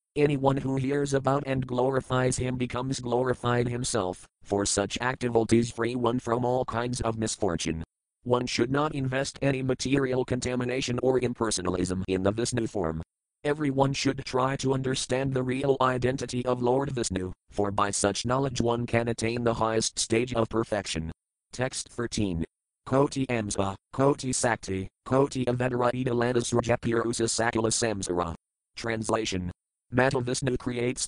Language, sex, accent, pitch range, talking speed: English, male, American, 105-130 Hz, 135 wpm